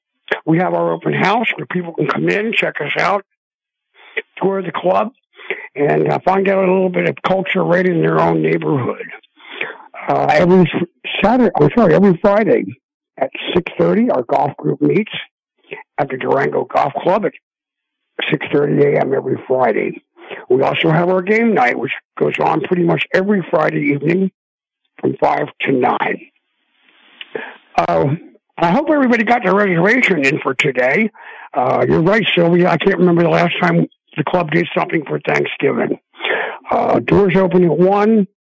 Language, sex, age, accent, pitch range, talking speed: English, male, 60-79, American, 175-220 Hz, 160 wpm